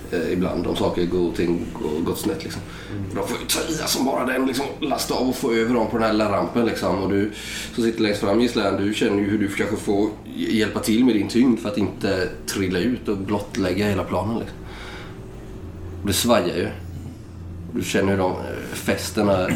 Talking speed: 215 wpm